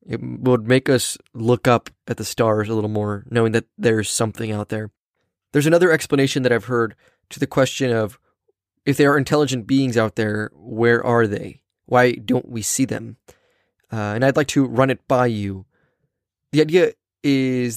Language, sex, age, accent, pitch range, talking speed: English, male, 20-39, American, 115-135 Hz, 185 wpm